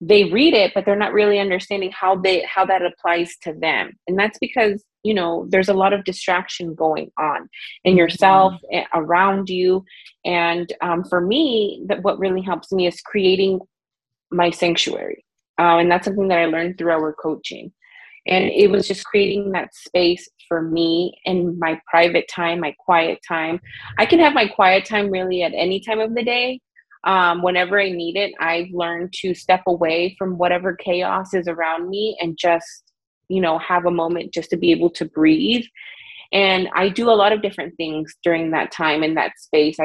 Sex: female